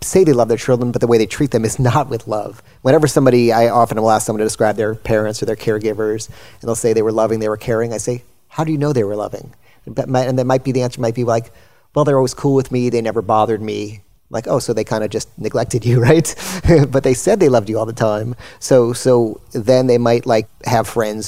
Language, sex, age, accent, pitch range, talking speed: English, male, 30-49, American, 110-125 Hz, 260 wpm